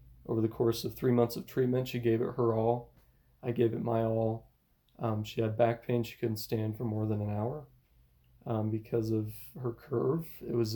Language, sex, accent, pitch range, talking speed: English, male, American, 105-120 Hz, 210 wpm